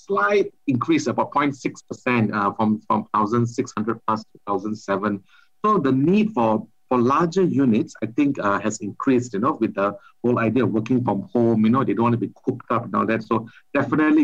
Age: 50-69